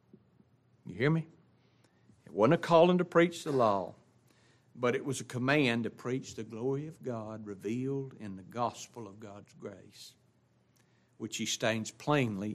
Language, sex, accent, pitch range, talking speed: English, male, American, 110-160 Hz, 160 wpm